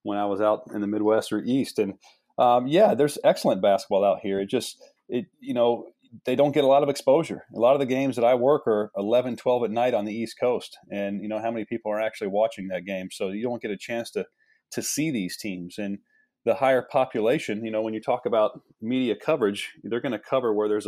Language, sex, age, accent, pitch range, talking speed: English, male, 30-49, American, 100-125 Hz, 245 wpm